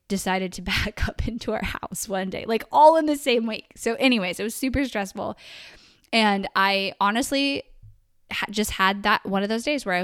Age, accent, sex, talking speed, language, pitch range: 10-29, American, female, 205 wpm, English, 185-215 Hz